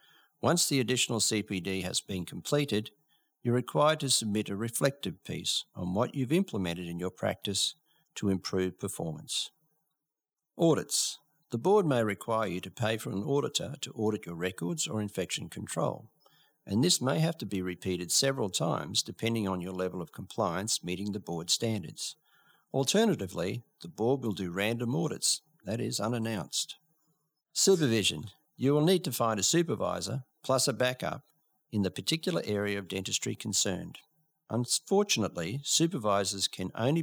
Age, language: 50-69, English